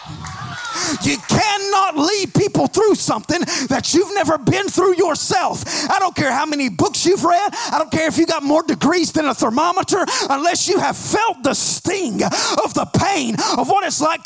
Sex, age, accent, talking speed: male, 30-49, American, 185 wpm